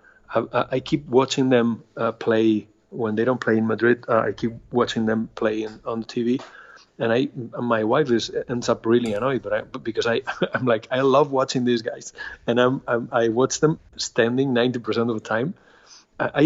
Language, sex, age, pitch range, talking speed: English, male, 30-49, 110-125 Hz, 195 wpm